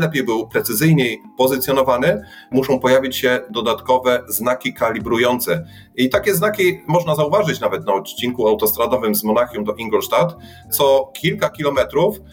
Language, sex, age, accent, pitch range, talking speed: Polish, male, 30-49, native, 115-135 Hz, 125 wpm